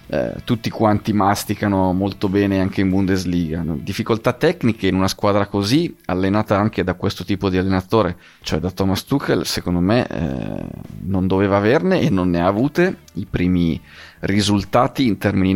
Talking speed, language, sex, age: 160 wpm, Italian, male, 30-49